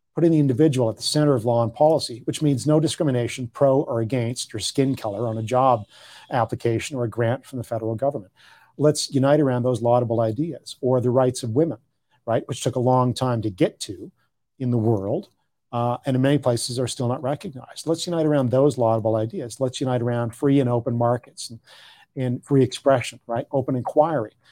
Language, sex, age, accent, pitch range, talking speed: English, male, 40-59, American, 120-150 Hz, 205 wpm